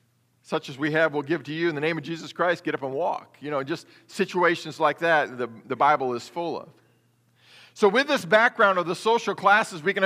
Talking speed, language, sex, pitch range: 240 wpm, English, male, 145-200 Hz